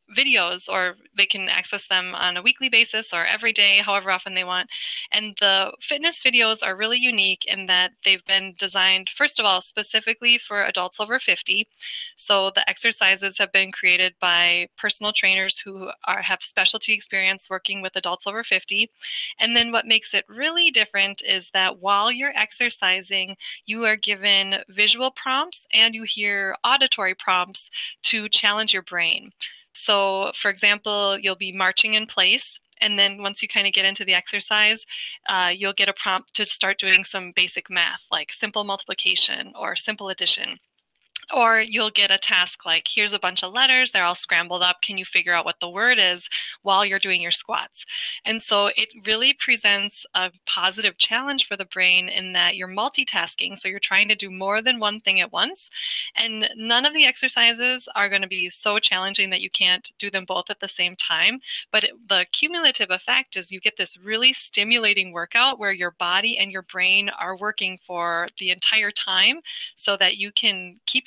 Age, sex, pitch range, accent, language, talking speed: 20-39, female, 185-220 Hz, American, English, 185 wpm